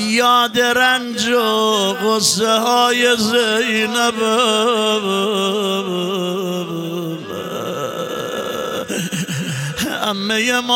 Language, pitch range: Persian, 195-245 Hz